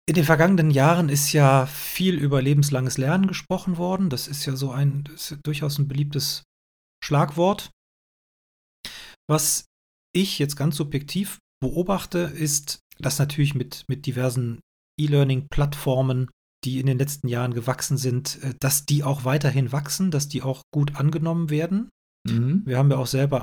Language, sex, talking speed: German, male, 155 wpm